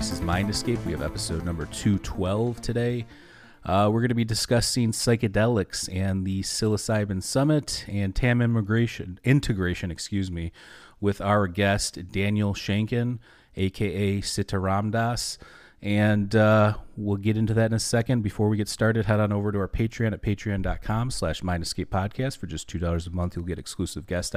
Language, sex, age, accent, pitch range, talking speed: English, male, 30-49, American, 90-110 Hz, 165 wpm